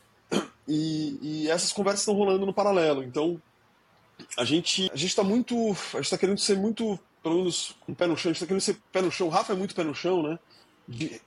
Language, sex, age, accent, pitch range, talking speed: Portuguese, male, 20-39, Brazilian, 150-195 Hz, 225 wpm